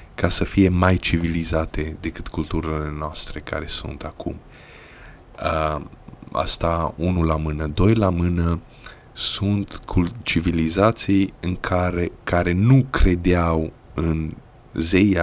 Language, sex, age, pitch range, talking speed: Romanian, male, 20-39, 80-100 Hz, 110 wpm